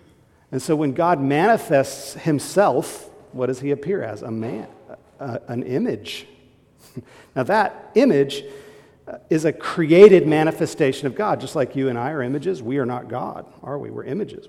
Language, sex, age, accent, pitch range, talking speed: English, male, 50-69, American, 135-170 Hz, 160 wpm